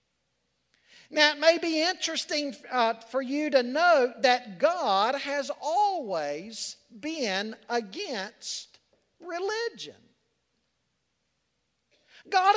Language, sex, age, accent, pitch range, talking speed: English, male, 50-69, American, 265-345 Hz, 85 wpm